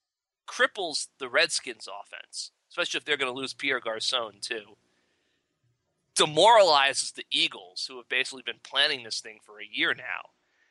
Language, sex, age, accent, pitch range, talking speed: English, male, 30-49, American, 120-140 Hz, 150 wpm